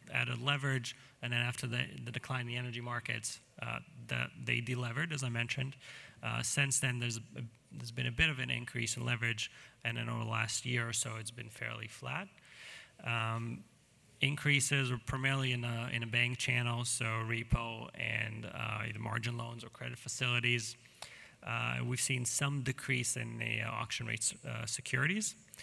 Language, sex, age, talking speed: English, male, 30-49, 180 wpm